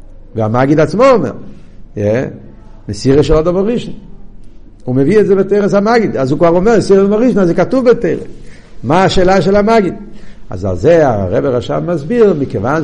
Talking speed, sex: 165 wpm, male